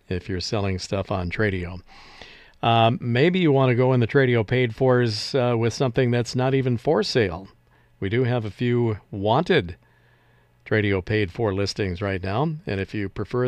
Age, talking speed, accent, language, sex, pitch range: 50-69, 175 wpm, American, English, male, 100-125 Hz